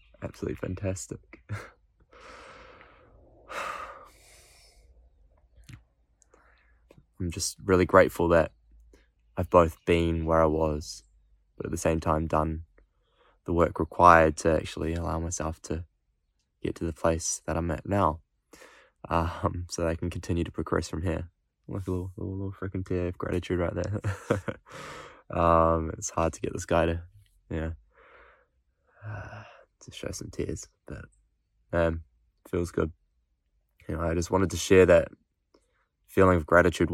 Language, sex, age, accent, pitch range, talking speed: English, male, 20-39, Australian, 80-90 Hz, 135 wpm